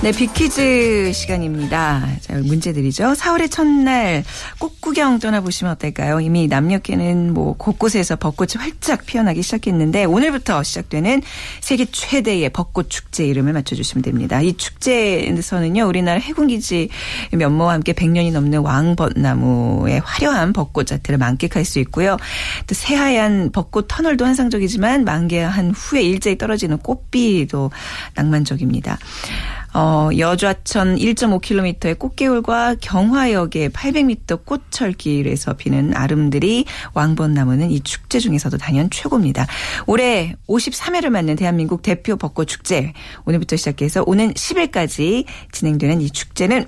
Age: 40-59